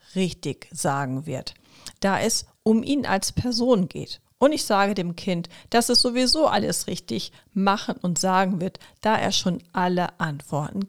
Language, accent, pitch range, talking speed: German, German, 160-220 Hz, 160 wpm